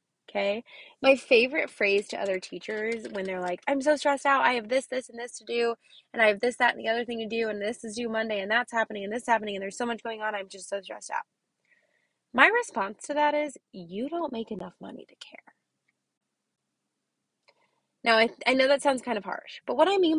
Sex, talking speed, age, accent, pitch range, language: female, 240 wpm, 20-39, American, 205-290 Hz, English